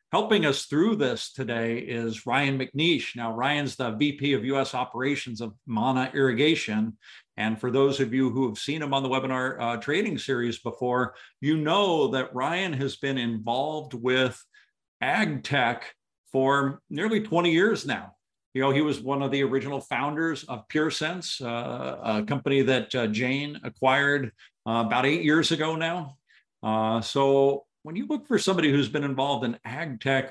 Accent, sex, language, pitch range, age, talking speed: American, male, English, 115-140 Hz, 50-69, 170 wpm